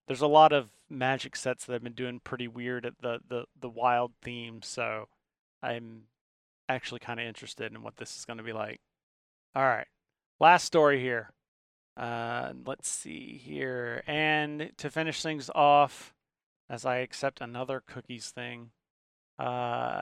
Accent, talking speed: American, 155 wpm